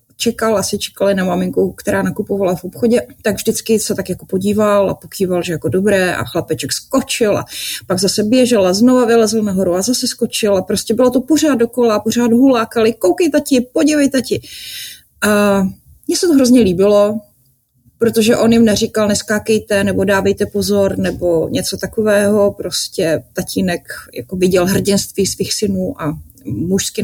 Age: 30-49